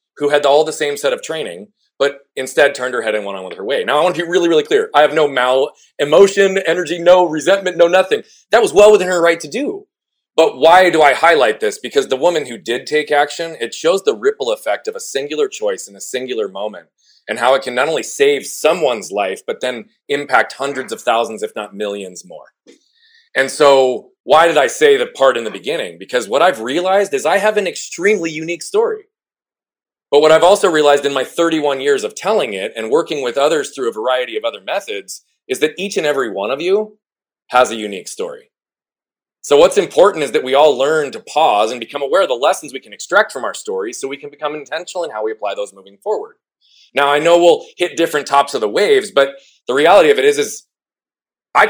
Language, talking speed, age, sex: English, 230 wpm, 30-49, male